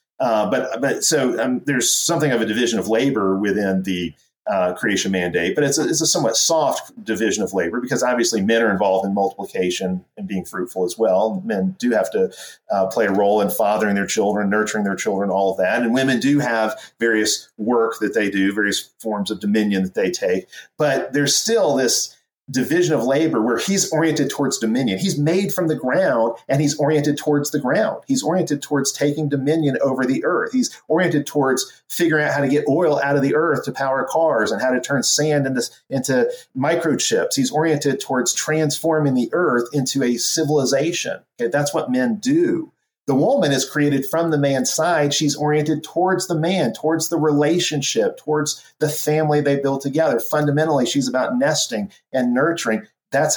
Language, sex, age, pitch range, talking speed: English, male, 40-59, 115-165 Hz, 190 wpm